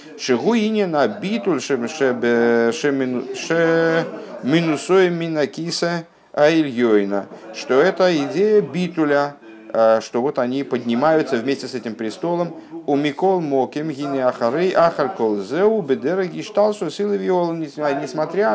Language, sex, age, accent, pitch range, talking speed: Russian, male, 50-69, native, 110-165 Hz, 55 wpm